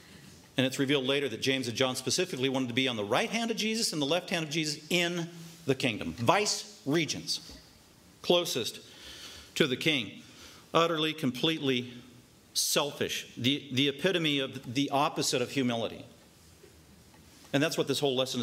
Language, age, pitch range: English, 40-59, 130-170 Hz